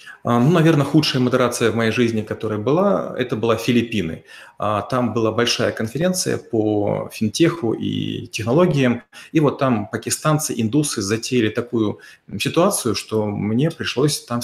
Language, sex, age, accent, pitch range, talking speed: Russian, male, 30-49, native, 110-130 Hz, 135 wpm